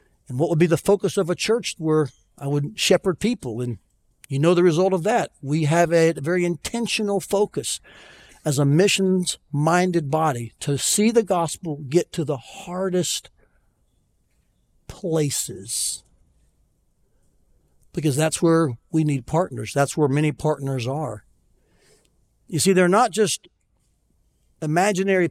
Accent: American